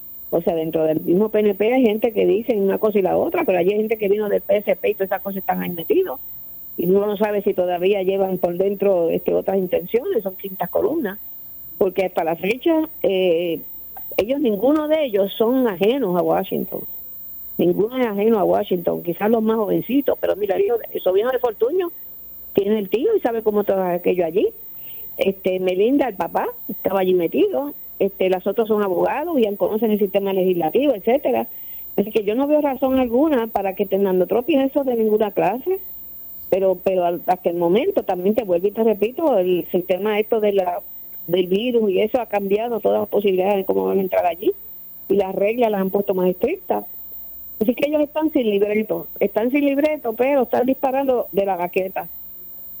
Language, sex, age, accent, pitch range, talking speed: Spanish, female, 50-69, American, 185-250 Hz, 190 wpm